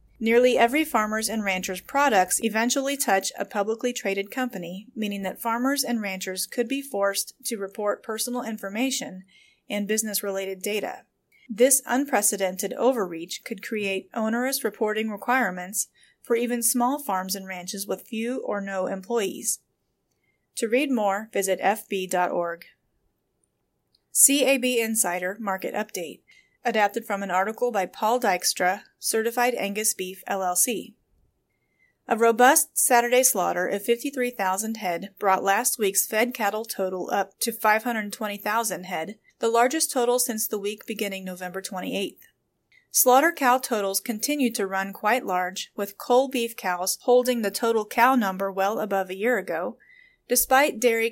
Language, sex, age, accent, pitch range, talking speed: English, female, 30-49, American, 195-245 Hz, 135 wpm